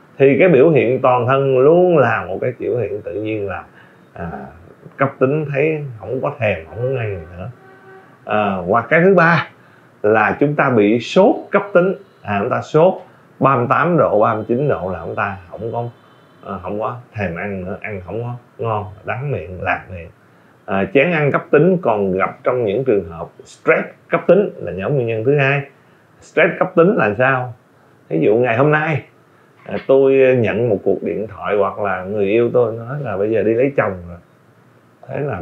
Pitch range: 115-155 Hz